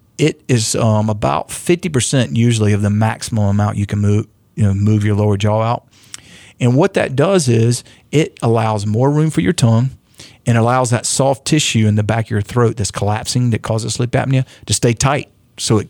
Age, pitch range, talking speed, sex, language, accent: 40-59, 105-125 Hz, 210 wpm, male, English, American